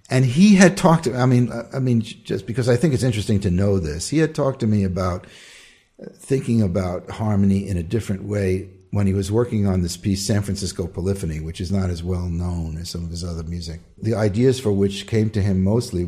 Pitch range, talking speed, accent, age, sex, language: 85-105 Hz, 225 wpm, American, 50-69, male, English